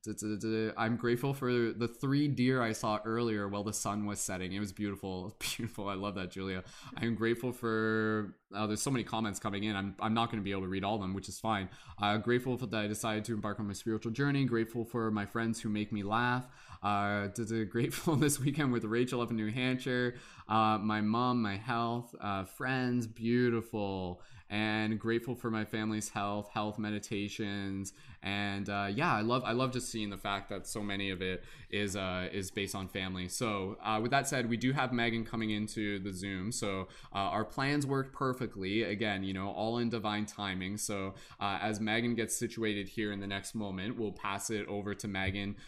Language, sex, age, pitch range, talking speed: English, male, 20-39, 100-115 Hz, 210 wpm